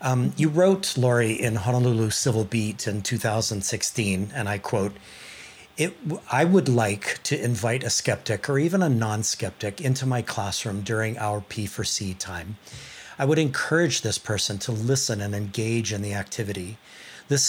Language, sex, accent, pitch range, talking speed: English, male, American, 105-130 Hz, 160 wpm